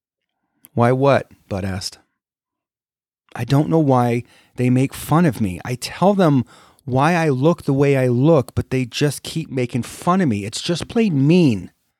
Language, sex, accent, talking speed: English, male, American, 175 wpm